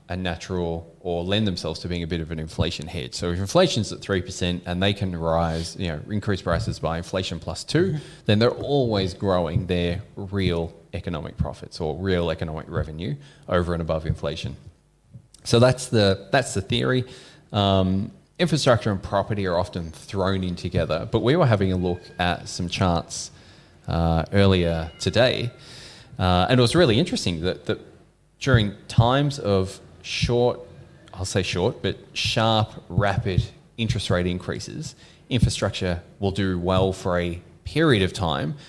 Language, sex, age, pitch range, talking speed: English, male, 20-39, 85-115 Hz, 160 wpm